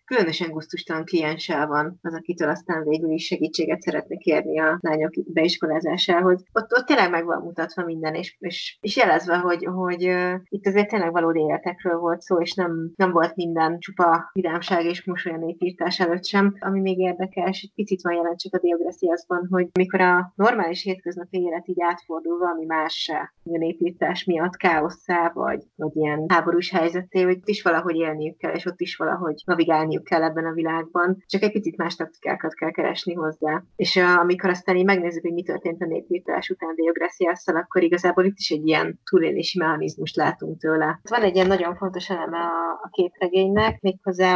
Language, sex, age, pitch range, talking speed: Hungarian, female, 30-49, 165-185 Hz, 175 wpm